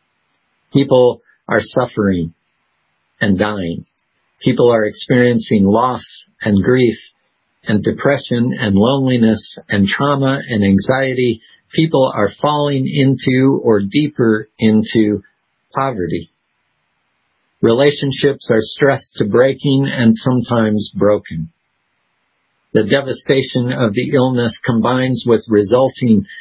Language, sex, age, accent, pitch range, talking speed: English, male, 50-69, American, 105-130 Hz, 100 wpm